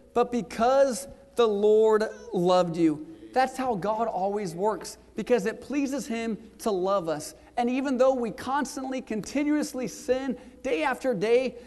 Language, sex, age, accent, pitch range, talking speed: English, male, 40-59, American, 210-255 Hz, 145 wpm